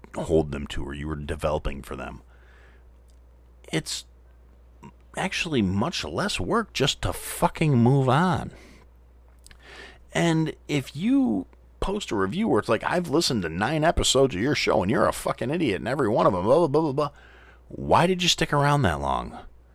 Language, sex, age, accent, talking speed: English, male, 40-59, American, 175 wpm